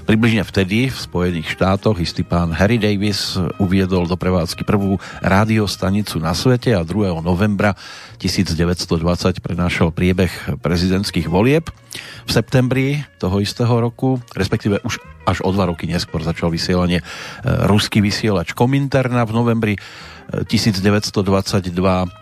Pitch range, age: 90-110 Hz, 40-59